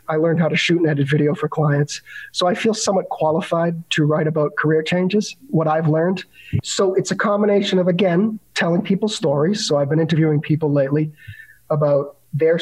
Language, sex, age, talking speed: English, male, 40-59, 190 wpm